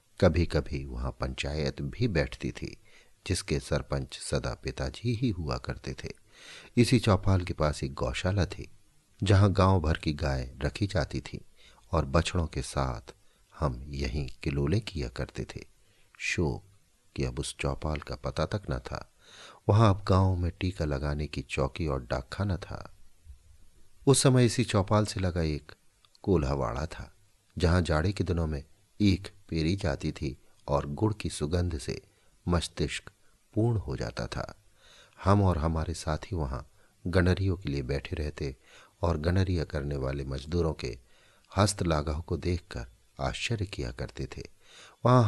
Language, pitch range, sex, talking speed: Hindi, 70-95 Hz, male, 150 wpm